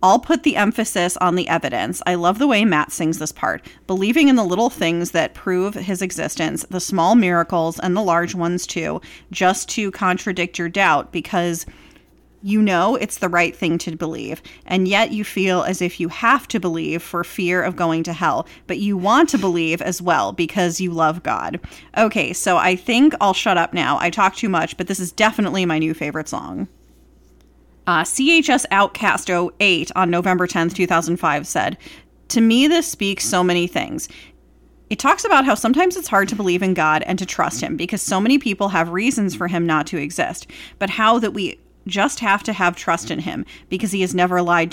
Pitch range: 170-205 Hz